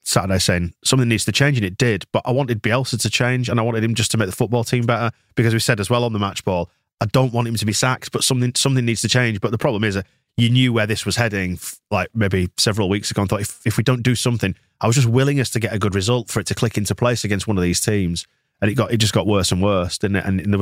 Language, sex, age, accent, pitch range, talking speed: English, male, 30-49, British, 95-120 Hz, 310 wpm